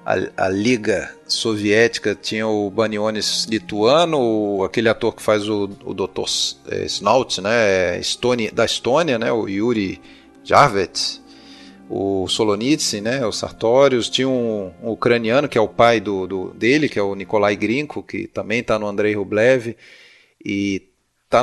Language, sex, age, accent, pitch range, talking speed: Portuguese, male, 40-59, Brazilian, 100-125 Hz, 145 wpm